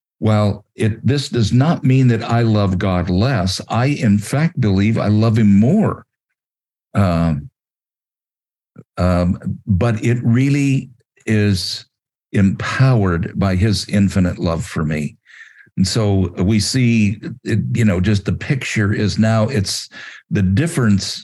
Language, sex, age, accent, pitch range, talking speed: English, male, 50-69, American, 95-115 Hz, 125 wpm